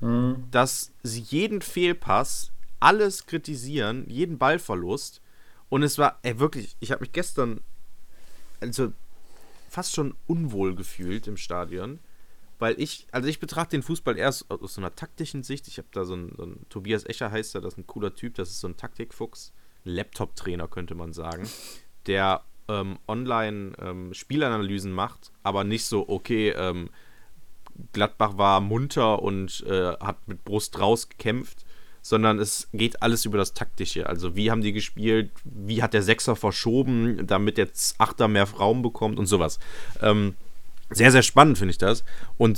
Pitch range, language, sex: 100-135 Hz, German, male